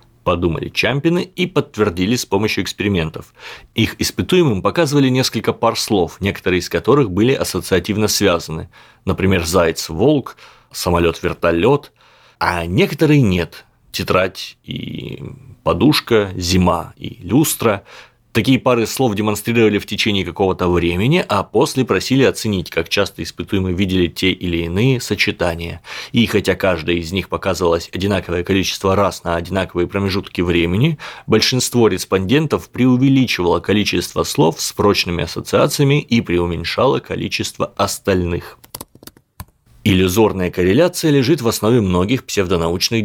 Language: Russian